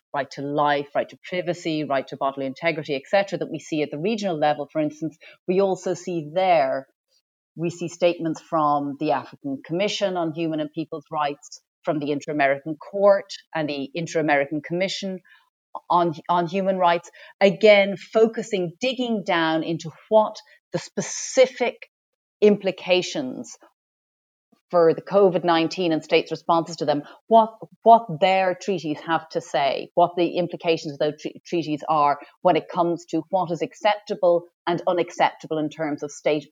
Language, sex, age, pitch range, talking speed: English, female, 30-49, 155-190 Hz, 155 wpm